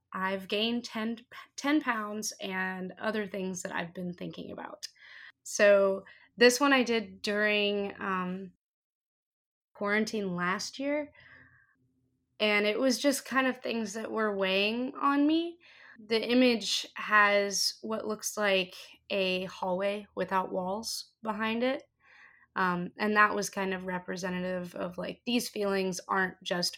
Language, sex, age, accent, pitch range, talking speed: English, female, 20-39, American, 185-225 Hz, 135 wpm